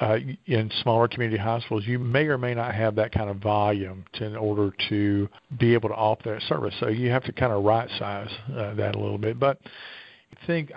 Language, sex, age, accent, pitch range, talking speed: English, male, 50-69, American, 110-130 Hz, 225 wpm